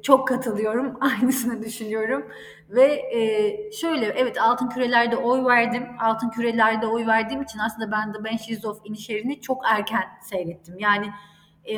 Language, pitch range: Turkish, 220-290 Hz